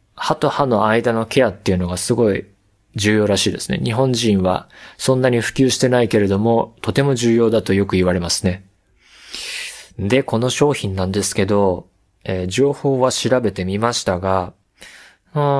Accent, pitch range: native, 100-130 Hz